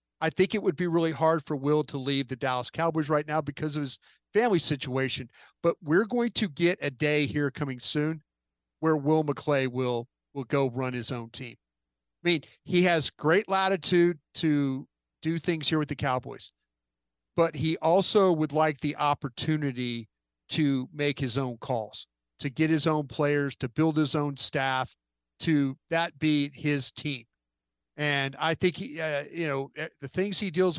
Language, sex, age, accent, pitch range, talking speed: English, male, 40-59, American, 135-165 Hz, 180 wpm